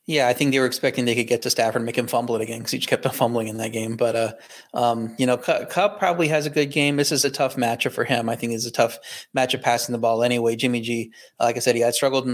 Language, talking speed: English, 305 wpm